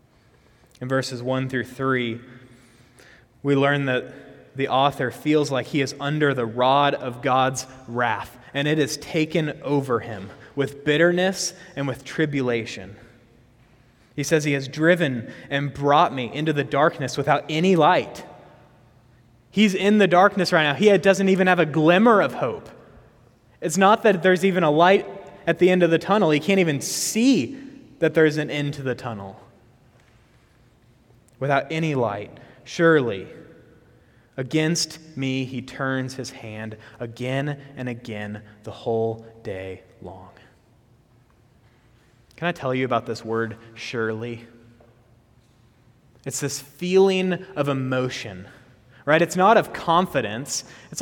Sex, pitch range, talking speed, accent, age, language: male, 120-165 Hz, 140 wpm, American, 20-39, English